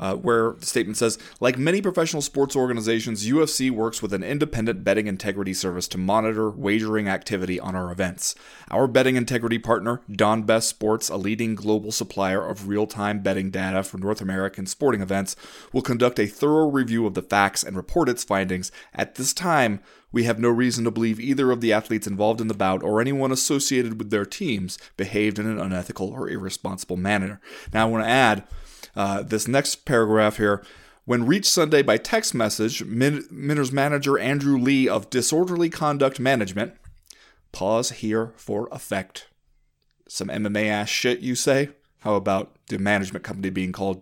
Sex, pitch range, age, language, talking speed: male, 100-135 Hz, 30-49, English, 175 wpm